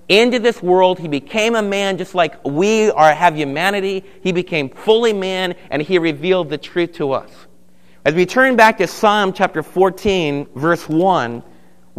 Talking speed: 170 wpm